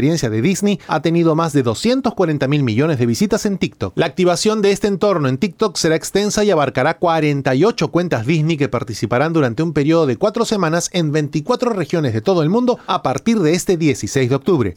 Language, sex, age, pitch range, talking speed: Spanish, male, 30-49, 150-200 Hz, 200 wpm